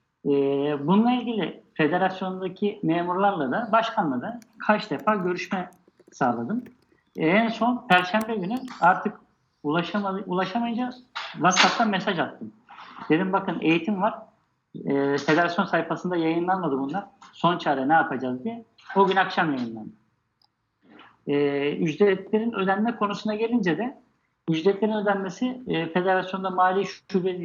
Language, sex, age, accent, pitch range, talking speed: Turkish, male, 50-69, native, 165-220 Hz, 115 wpm